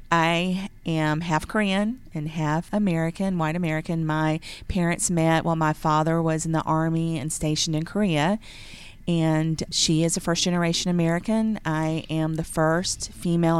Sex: female